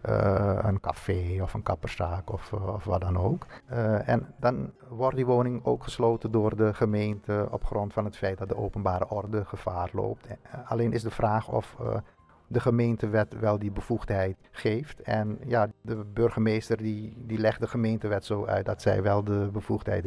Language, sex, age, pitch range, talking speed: Dutch, male, 50-69, 95-115 Hz, 190 wpm